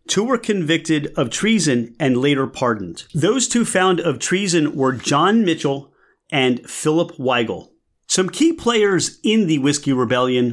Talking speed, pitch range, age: 150 wpm, 130-175 Hz, 30-49